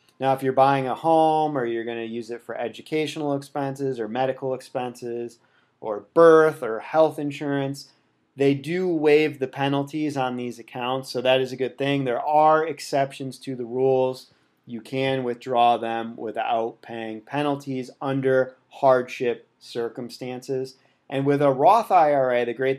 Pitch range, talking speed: 115-140 Hz, 160 wpm